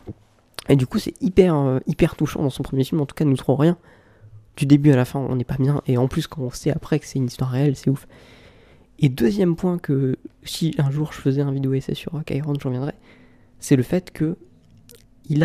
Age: 20-39